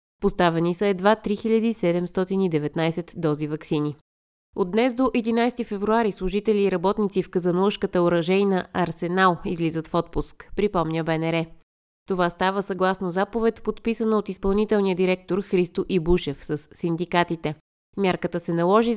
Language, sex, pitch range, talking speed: Bulgarian, female, 175-210 Hz, 120 wpm